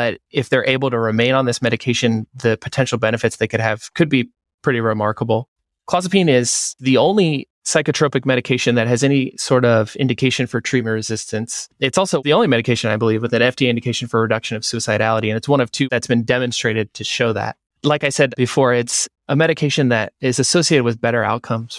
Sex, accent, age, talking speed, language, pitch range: male, American, 20-39, 200 wpm, English, 115-135 Hz